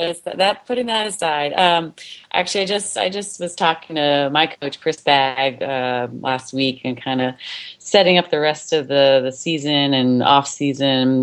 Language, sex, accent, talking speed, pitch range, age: English, female, American, 180 wpm, 135-165 Hz, 30-49